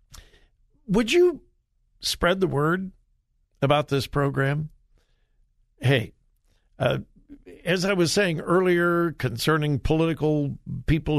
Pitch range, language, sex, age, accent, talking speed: 135-185 Hz, English, male, 60-79, American, 95 wpm